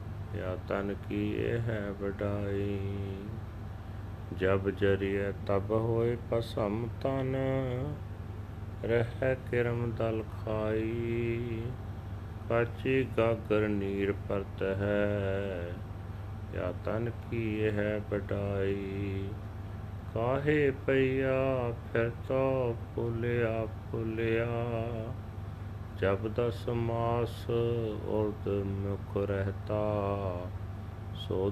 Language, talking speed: Punjabi, 70 wpm